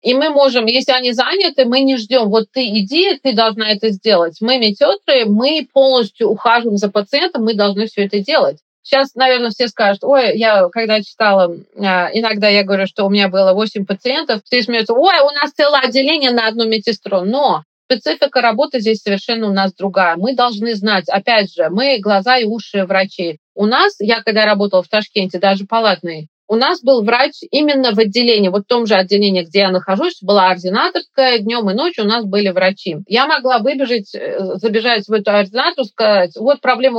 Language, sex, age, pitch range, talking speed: Russian, female, 30-49, 200-255 Hz, 190 wpm